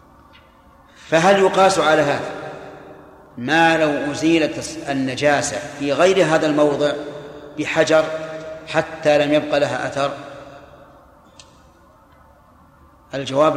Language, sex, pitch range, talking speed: Arabic, male, 145-165 Hz, 85 wpm